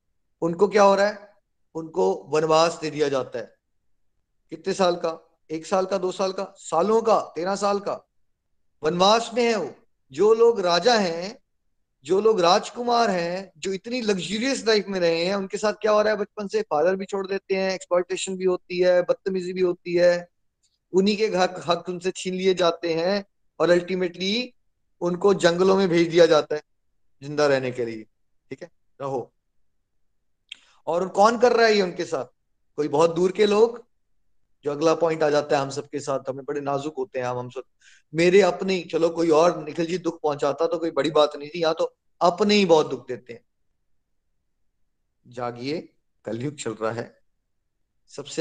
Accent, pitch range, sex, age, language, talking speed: native, 140-195 Hz, male, 30-49, Hindi, 185 wpm